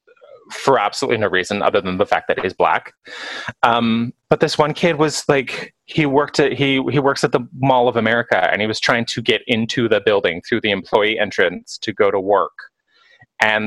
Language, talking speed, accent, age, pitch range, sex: English, 205 wpm, American, 20-39, 110-170 Hz, male